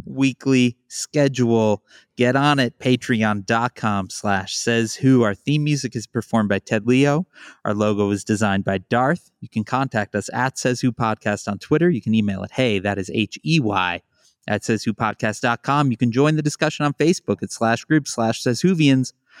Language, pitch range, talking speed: English, 105-135 Hz, 180 wpm